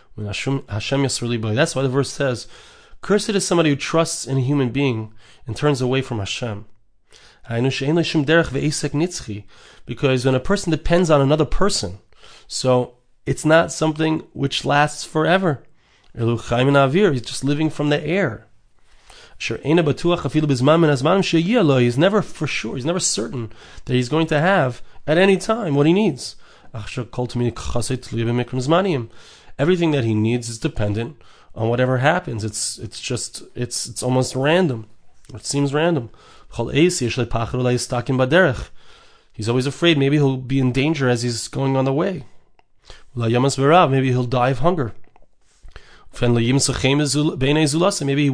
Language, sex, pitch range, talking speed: English, male, 120-155 Hz, 120 wpm